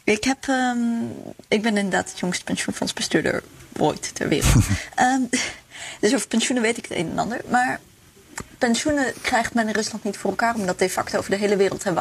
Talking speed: 195 wpm